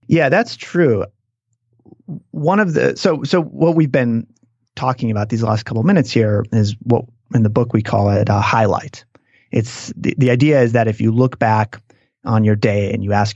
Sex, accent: male, American